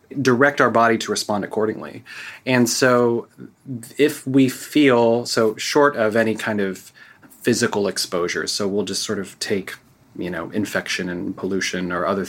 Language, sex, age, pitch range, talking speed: English, male, 30-49, 105-125 Hz, 155 wpm